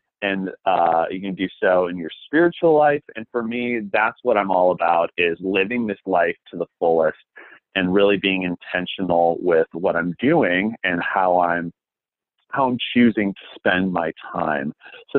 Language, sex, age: English, male, 30-49